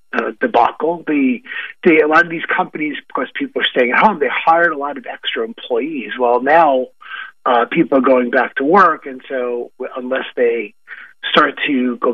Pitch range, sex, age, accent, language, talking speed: 135-225 Hz, male, 30-49, American, English, 190 wpm